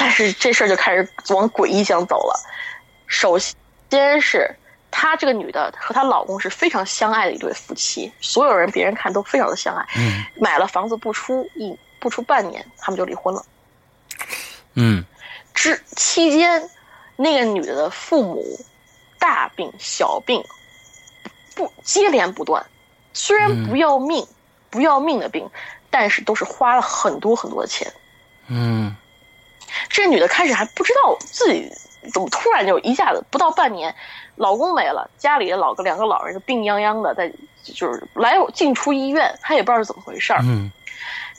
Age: 20-39